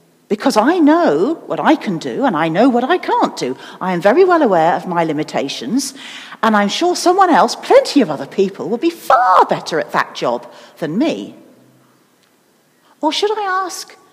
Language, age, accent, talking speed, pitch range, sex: English, 50-69, British, 185 wpm, 225-330 Hz, female